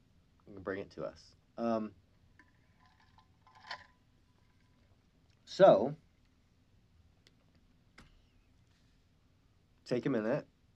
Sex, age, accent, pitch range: male, 40-59, American, 90-115 Hz